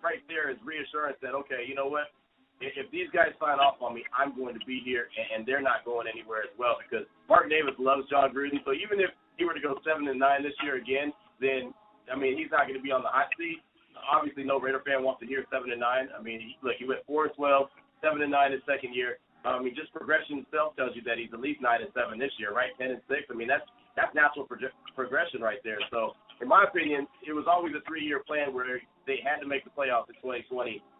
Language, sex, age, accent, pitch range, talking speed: English, male, 30-49, American, 130-155 Hz, 255 wpm